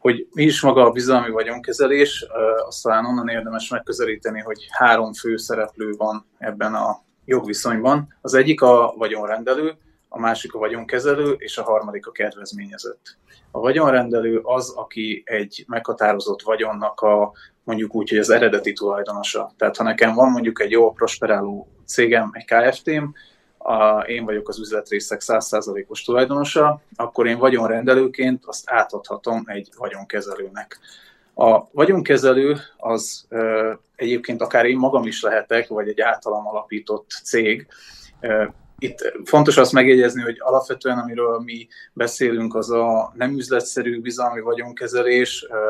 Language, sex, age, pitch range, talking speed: Hungarian, male, 30-49, 110-130 Hz, 135 wpm